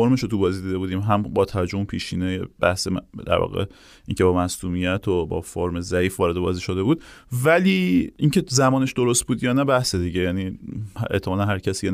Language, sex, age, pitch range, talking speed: Persian, male, 30-49, 100-130 Hz, 195 wpm